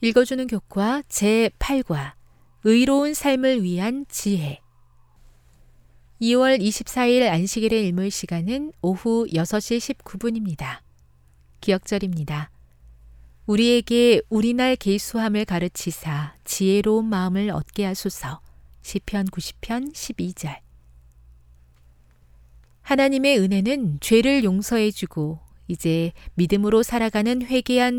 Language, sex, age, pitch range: Korean, female, 40-59, 150-240 Hz